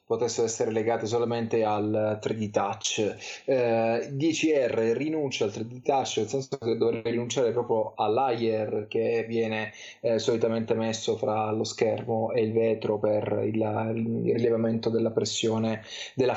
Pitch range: 110-125 Hz